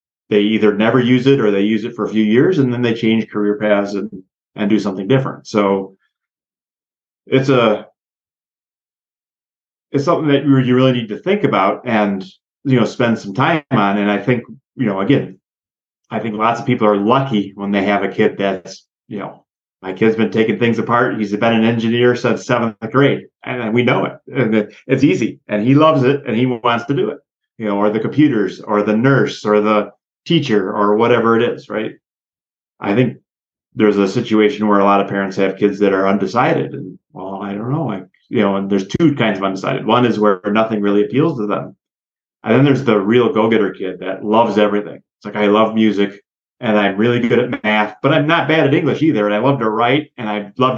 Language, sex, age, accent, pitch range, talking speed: English, male, 30-49, American, 105-130 Hz, 215 wpm